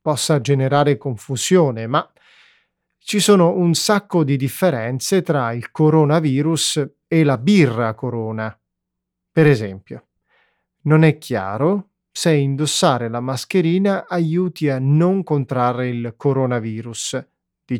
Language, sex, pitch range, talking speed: Italian, male, 120-165 Hz, 110 wpm